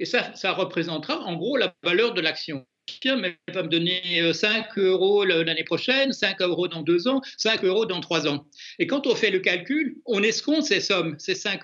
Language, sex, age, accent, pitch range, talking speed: French, male, 60-79, French, 165-225 Hz, 205 wpm